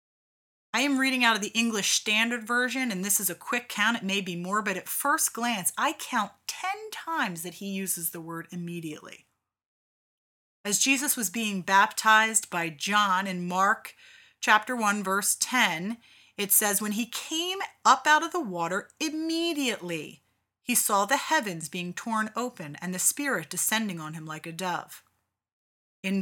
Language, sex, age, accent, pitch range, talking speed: English, female, 30-49, American, 180-265 Hz, 170 wpm